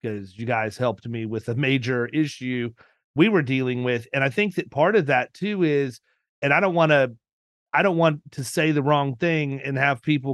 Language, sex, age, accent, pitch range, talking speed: English, male, 30-49, American, 125-155 Hz, 220 wpm